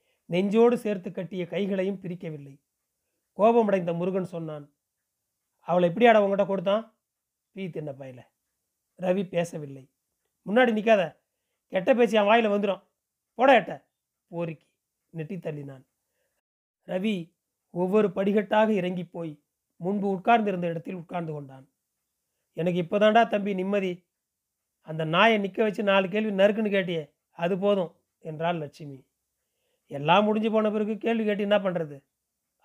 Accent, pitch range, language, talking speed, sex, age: native, 165-210 Hz, Tamil, 115 wpm, male, 40-59